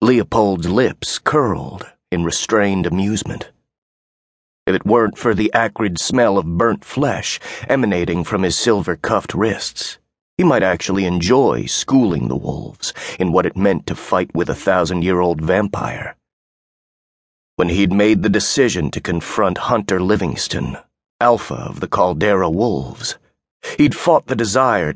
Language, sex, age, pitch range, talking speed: English, male, 30-49, 85-110 Hz, 135 wpm